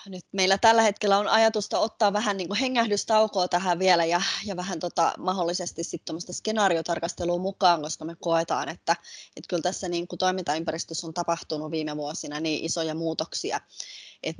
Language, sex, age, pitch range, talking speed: Finnish, female, 20-39, 160-190 Hz, 155 wpm